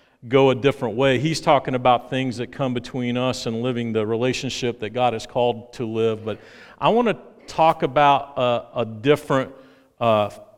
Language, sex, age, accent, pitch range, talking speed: English, male, 50-69, American, 120-145 Hz, 180 wpm